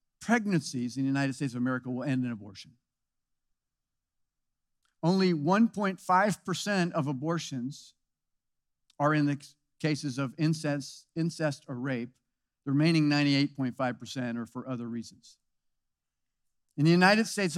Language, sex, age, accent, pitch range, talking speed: English, male, 50-69, American, 145-185 Hz, 125 wpm